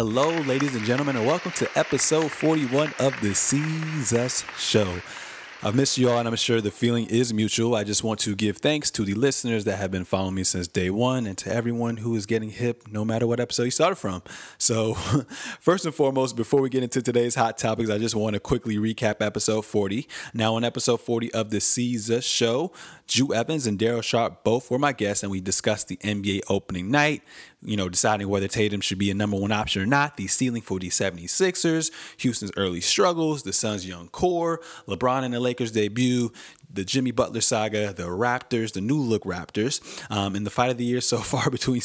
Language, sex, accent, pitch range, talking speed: English, male, American, 105-125 Hz, 210 wpm